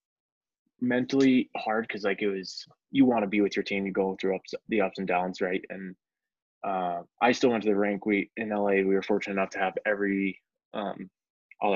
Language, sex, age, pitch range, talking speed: English, male, 20-39, 95-100 Hz, 215 wpm